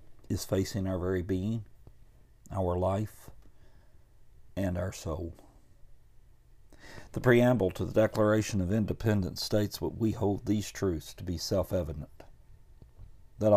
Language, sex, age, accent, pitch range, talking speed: English, male, 50-69, American, 90-105 Hz, 120 wpm